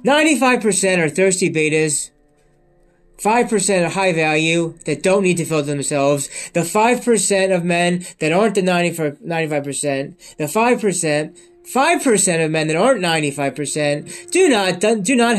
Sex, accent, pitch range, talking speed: male, American, 150-200 Hz, 140 wpm